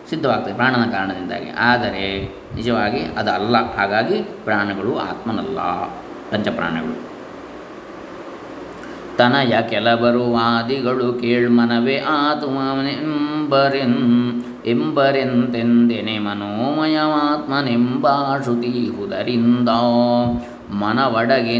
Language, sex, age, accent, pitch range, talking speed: Kannada, male, 20-39, native, 120-135 Hz, 50 wpm